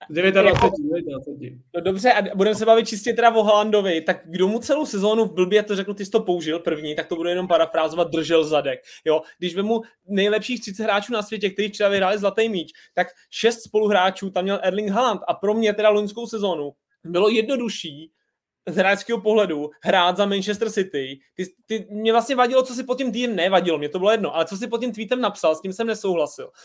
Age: 20-39